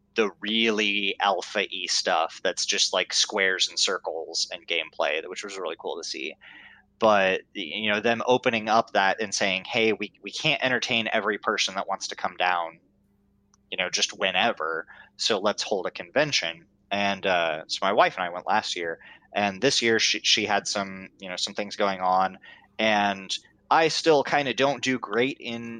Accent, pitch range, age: American, 95-115 Hz, 20-39